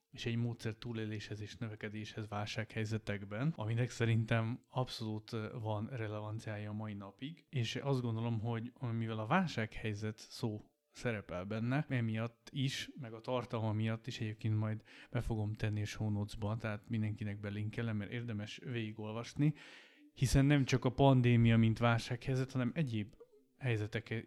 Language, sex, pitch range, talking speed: Hungarian, male, 110-130 Hz, 135 wpm